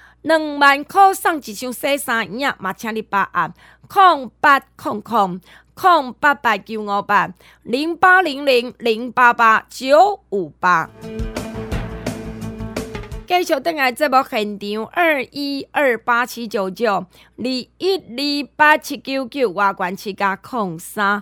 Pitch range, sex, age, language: 205-280 Hz, female, 30-49, Chinese